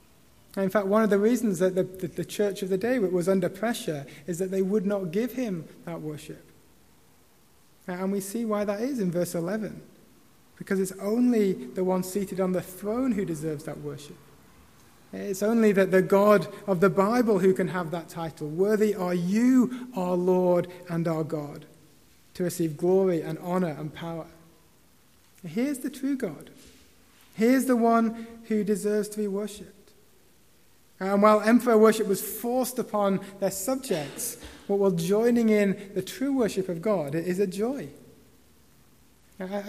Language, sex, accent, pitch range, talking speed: English, male, British, 185-220 Hz, 170 wpm